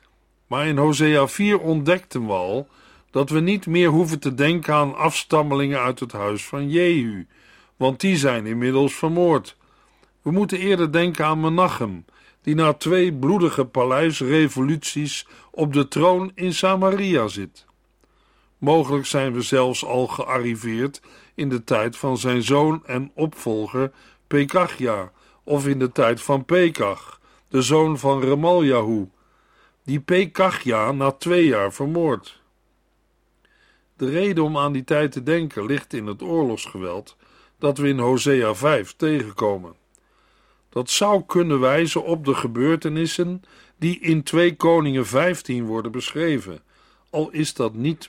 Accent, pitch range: Dutch, 130-165 Hz